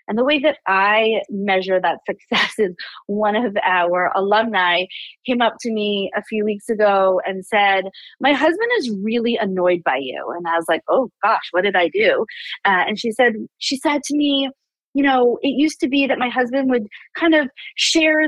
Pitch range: 205-275 Hz